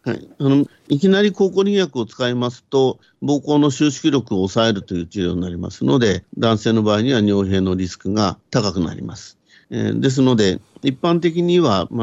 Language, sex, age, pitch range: Japanese, male, 50-69, 105-135 Hz